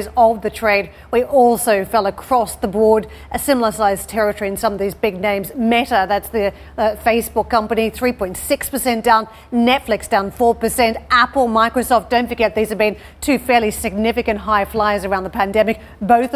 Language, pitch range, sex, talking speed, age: English, 210-245 Hz, female, 175 wpm, 40-59